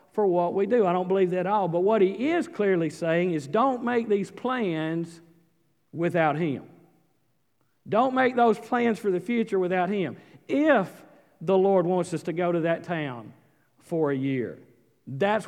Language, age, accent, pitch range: English, 50-69, American, 165-225 Hz